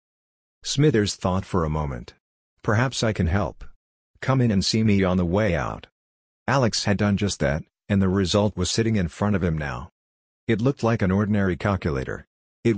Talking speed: 190 wpm